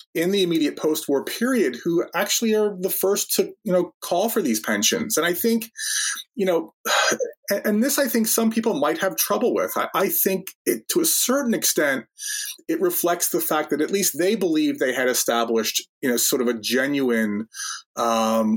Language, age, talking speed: English, 30-49, 195 wpm